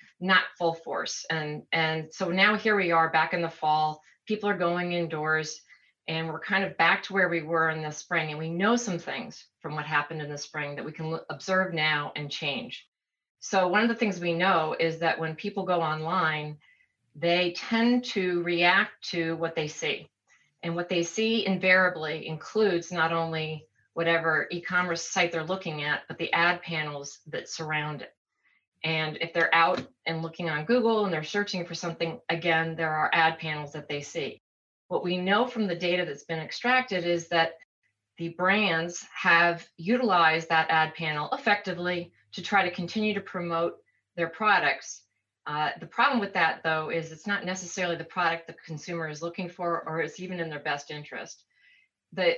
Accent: American